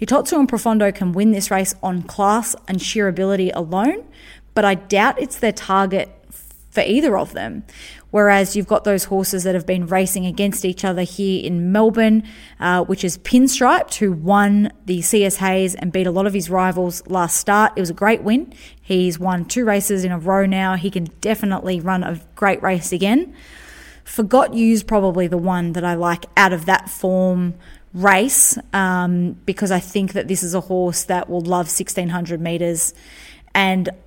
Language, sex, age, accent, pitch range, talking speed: English, female, 20-39, Australian, 180-210 Hz, 185 wpm